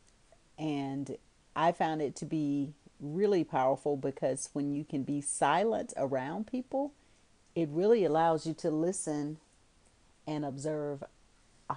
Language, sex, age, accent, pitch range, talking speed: English, female, 40-59, American, 140-165 Hz, 125 wpm